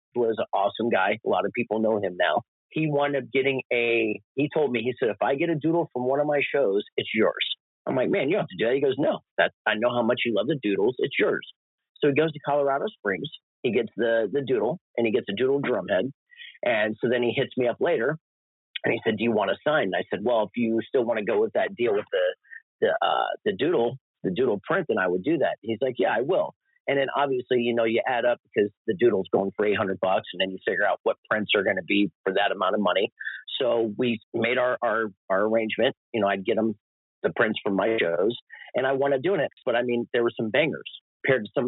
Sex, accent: male, American